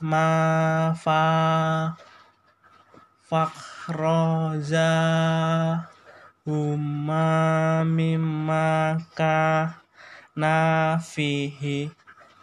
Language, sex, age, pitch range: Indonesian, male, 20-39, 155-160 Hz